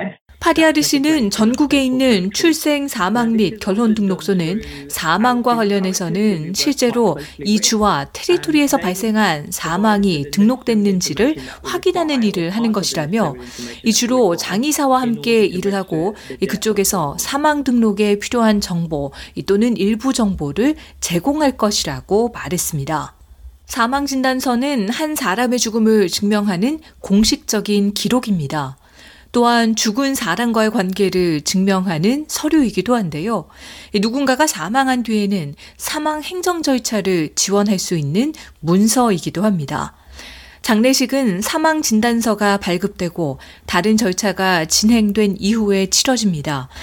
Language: Korean